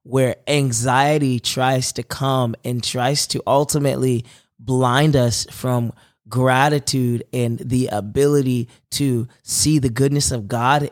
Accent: American